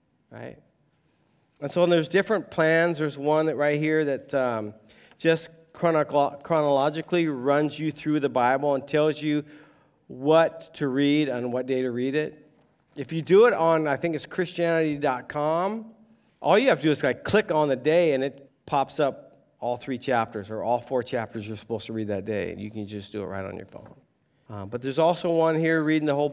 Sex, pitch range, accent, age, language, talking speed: male, 120-155 Hz, American, 40-59, English, 205 wpm